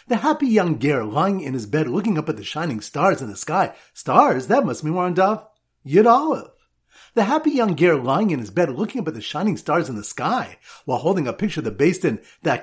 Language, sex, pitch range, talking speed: English, male, 155-215 Hz, 240 wpm